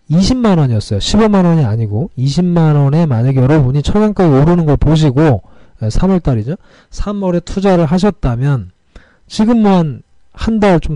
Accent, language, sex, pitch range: native, Korean, male, 120-180 Hz